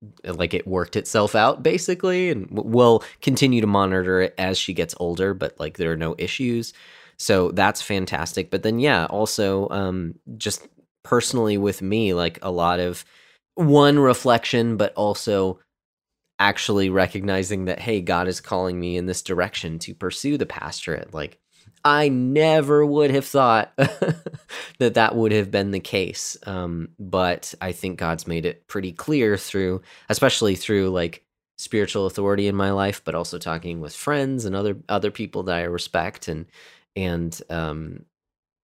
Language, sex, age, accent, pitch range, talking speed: English, male, 20-39, American, 90-115 Hz, 160 wpm